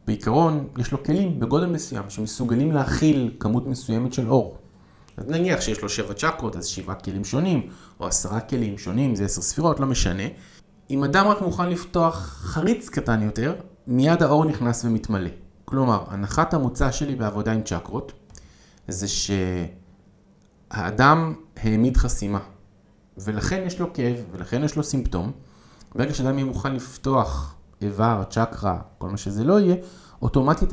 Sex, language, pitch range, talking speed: male, Hebrew, 100-140 Hz, 145 wpm